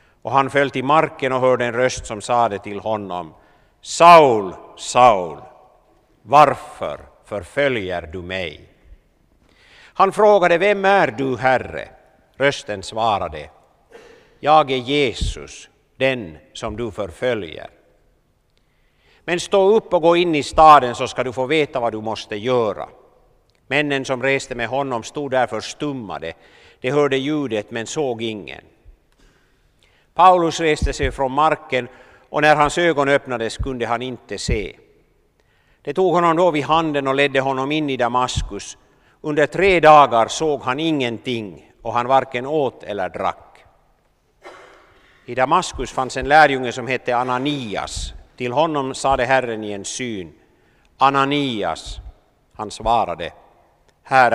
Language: Swedish